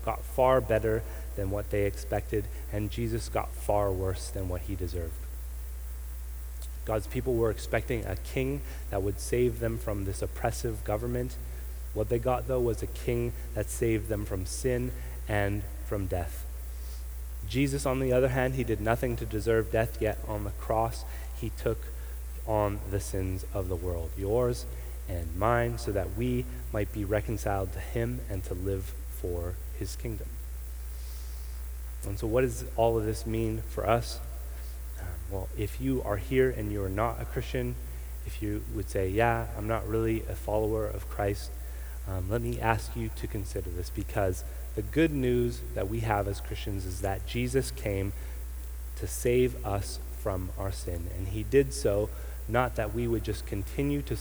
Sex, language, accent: male, English, American